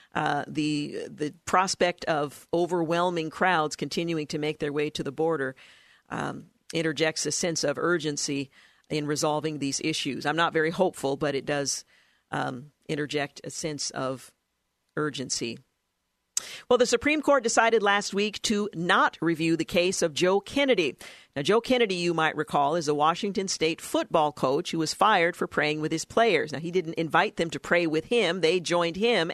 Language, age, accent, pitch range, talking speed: English, 50-69, American, 155-200 Hz, 175 wpm